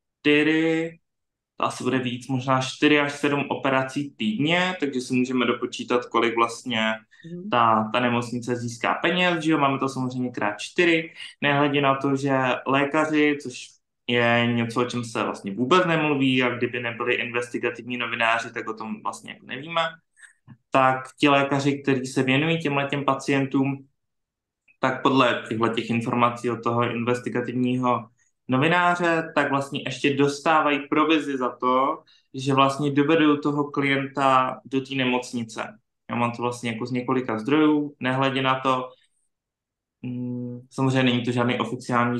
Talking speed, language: 140 wpm, Slovak